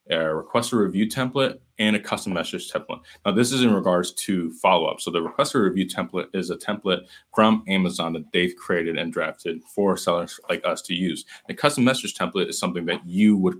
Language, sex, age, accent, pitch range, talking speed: English, male, 20-39, American, 90-110 Hz, 205 wpm